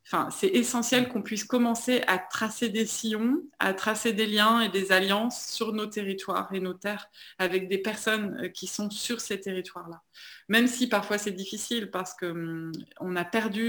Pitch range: 180-220 Hz